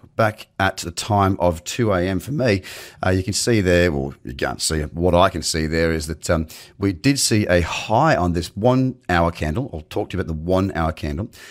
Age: 30-49